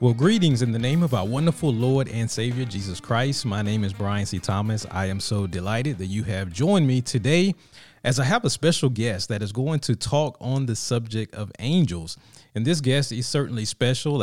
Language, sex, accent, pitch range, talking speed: English, male, American, 105-135 Hz, 215 wpm